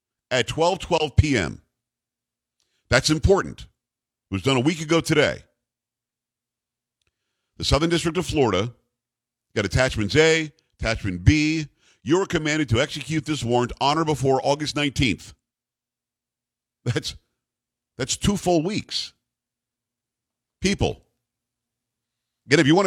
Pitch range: 115-155 Hz